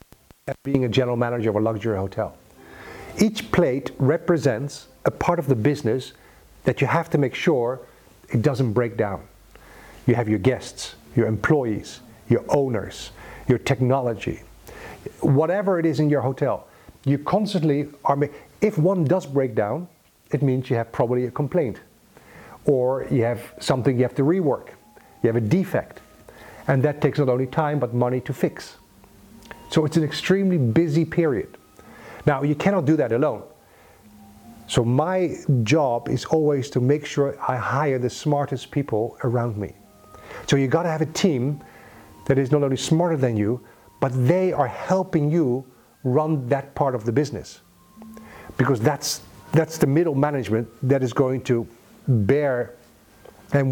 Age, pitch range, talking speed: 50-69, 120-150 Hz, 160 wpm